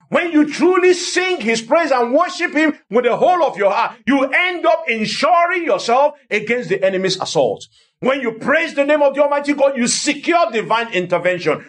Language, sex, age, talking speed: English, male, 50-69, 190 wpm